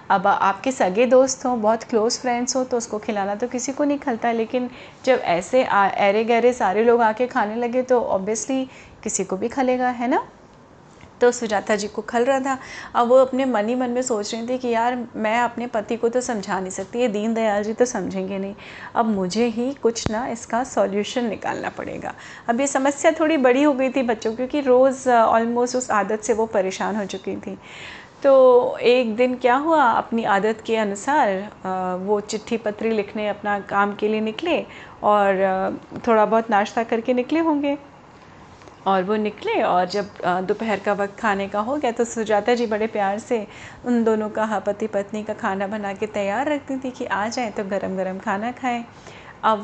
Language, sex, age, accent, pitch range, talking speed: Hindi, female, 30-49, native, 210-250 Hz, 195 wpm